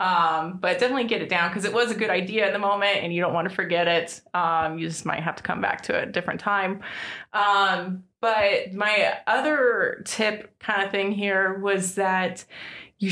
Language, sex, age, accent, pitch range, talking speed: English, female, 20-39, American, 185-230 Hz, 220 wpm